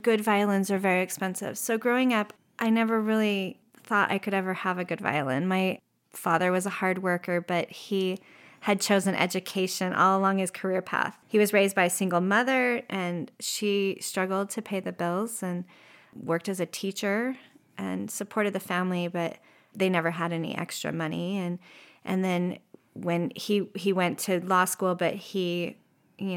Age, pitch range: 30-49, 180-200 Hz